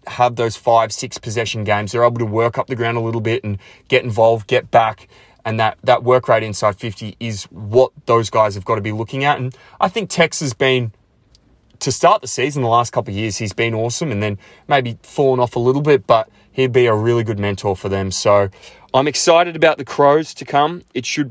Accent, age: Australian, 20-39